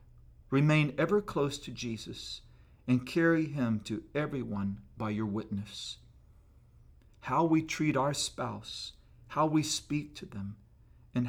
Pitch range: 110-140 Hz